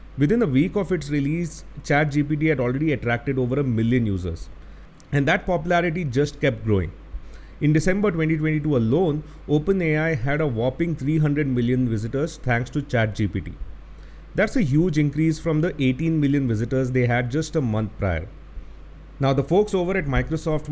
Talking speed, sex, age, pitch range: 160 wpm, male, 30-49, 115-155 Hz